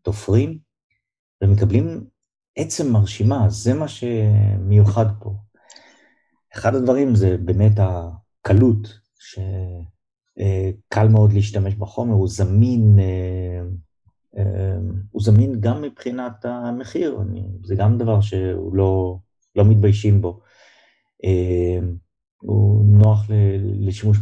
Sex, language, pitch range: male, Hebrew, 95-110 Hz